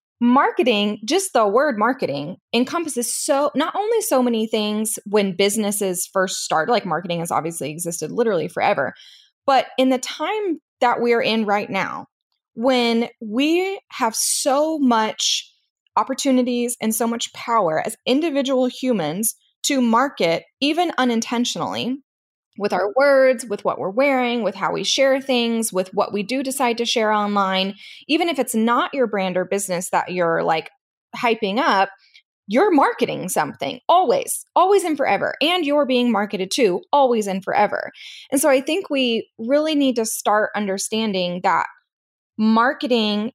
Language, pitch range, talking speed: English, 205-275 Hz, 150 wpm